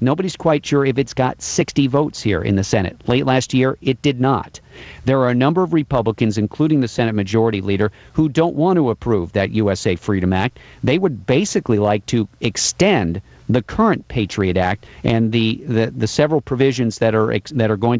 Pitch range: 110-135 Hz